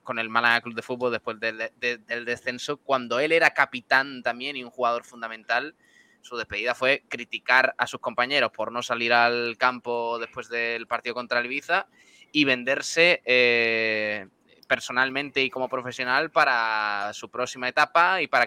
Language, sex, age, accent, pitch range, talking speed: Spanish, male, 20-39, Spanish, 115-130 Hz, 160 wpm